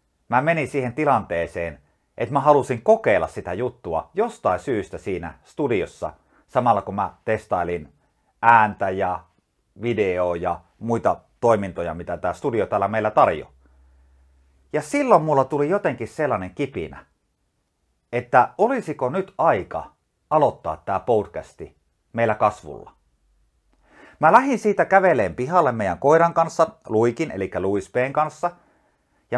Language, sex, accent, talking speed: Finnish, male, native, 120 wpm